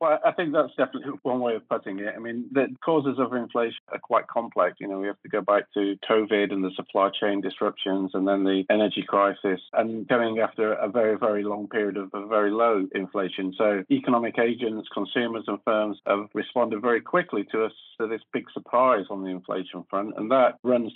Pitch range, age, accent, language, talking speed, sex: 100-120 Hz, 40-59, British, English, 215 wpm, male